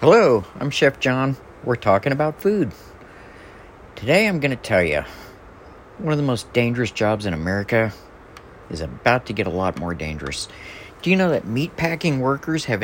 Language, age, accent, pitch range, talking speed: English, 50-69, American, 95-135 Hz, 175 wpm